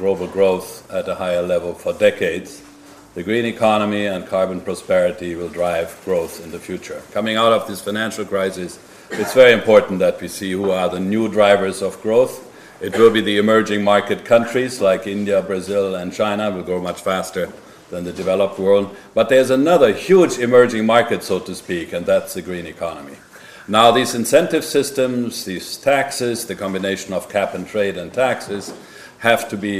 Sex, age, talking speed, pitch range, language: male, 60-79, 180 wpm, 95-125 Hz, English